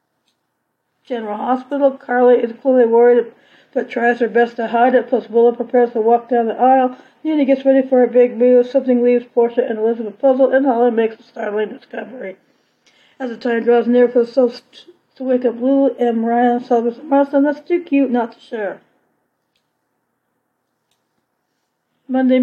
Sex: female